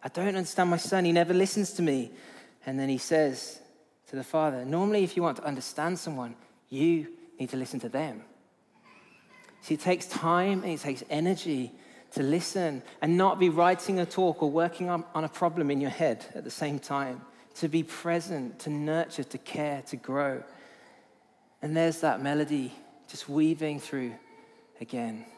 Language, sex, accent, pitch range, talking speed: English, male, British, 140-170 Hz, 175 wpm